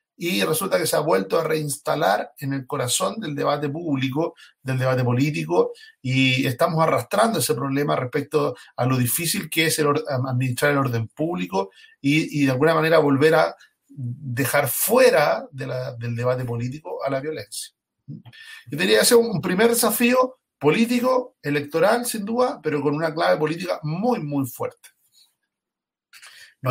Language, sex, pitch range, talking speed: Spanish, male, 135-190 Hz, 160 wpm